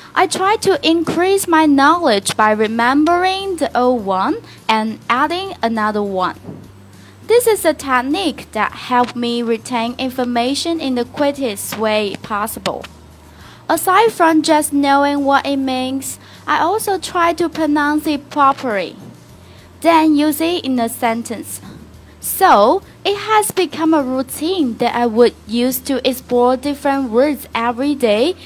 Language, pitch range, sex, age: Chinese, 235-320 Hz, female, 20-39